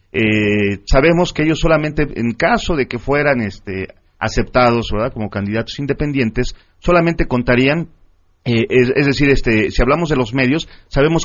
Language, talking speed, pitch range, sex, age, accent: Spanish, 155 wpm, 110-150 Hz, male, 40-59, Mexican